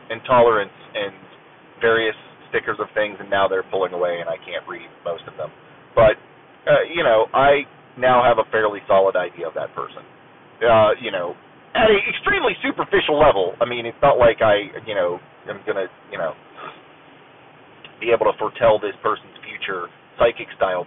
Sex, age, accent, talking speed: male, 30-49, American, 175 wpm